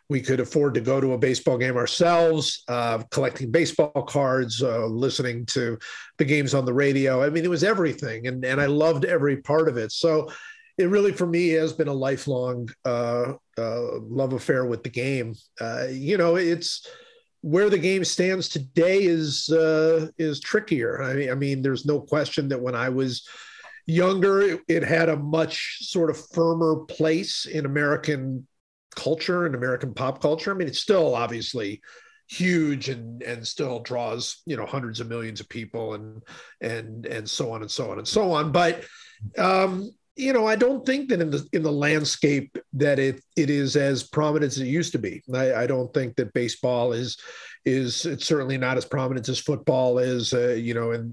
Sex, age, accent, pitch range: male, 50-69, American, 125-160 Hz